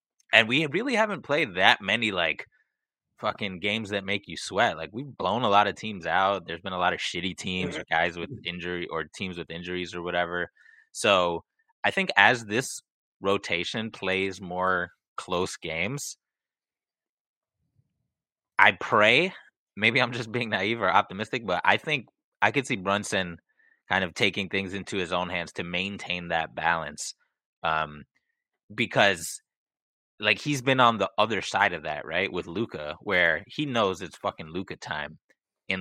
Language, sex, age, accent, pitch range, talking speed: English, male, 20-39, American, 85-105 Hz, 165 wpm